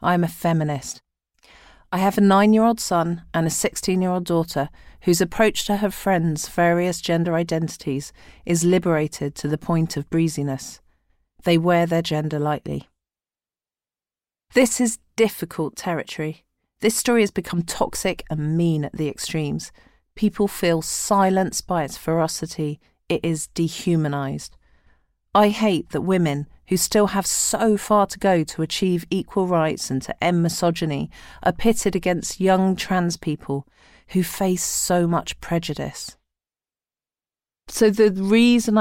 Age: 40-59